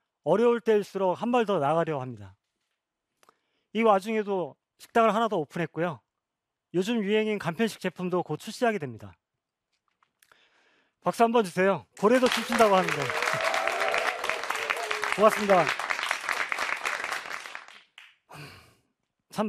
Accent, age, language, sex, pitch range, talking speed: Korean, 30-49, English, male, 155-220 Hz, 85 wpm